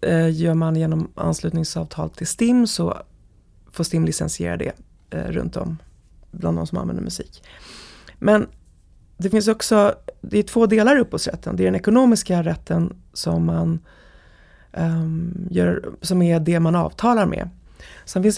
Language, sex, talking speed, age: Swedish, female, 145 wpm, 30-49